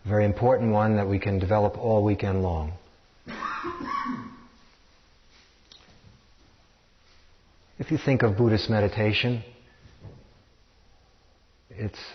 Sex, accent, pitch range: male, American, 95-115 Hz